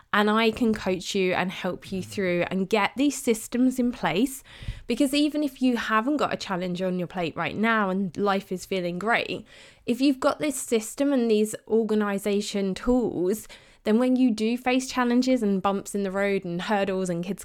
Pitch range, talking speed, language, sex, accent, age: 190-235 Hz, 195 wpm, English, female, British, 20-39